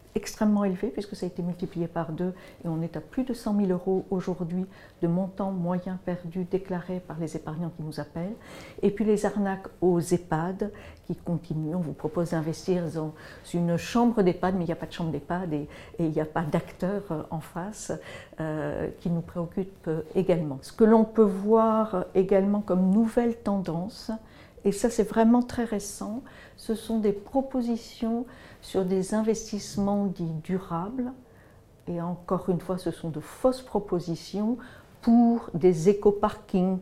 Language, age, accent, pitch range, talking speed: French, 60-79, French, 165-205 Hz, 175 wpm